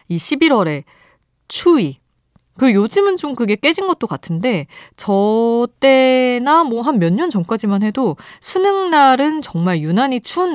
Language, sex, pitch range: Korean, female, 165-235 Hz